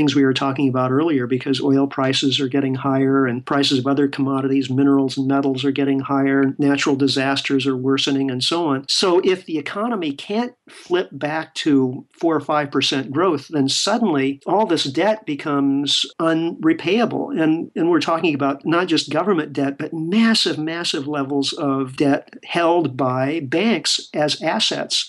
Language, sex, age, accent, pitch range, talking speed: English, male, 50-69, American, 140-165 Hz, 165 wpm